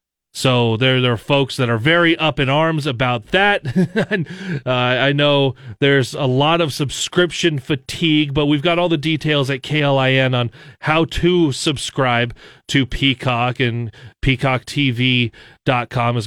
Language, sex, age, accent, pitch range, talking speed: English, male, 30-49, American, 120-150 Hz, 150 wpm